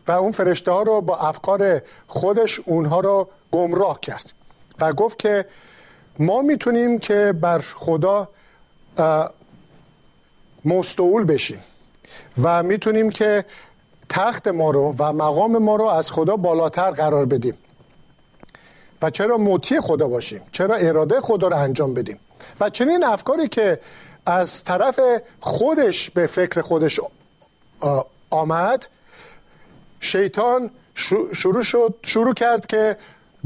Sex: male